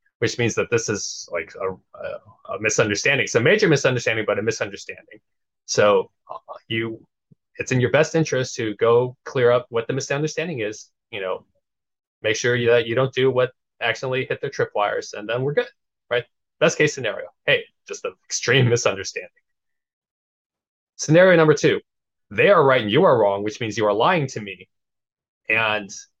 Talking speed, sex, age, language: 180 wpm, male, 20-39, English